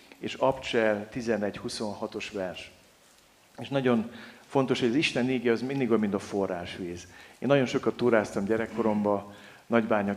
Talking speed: 130 wpm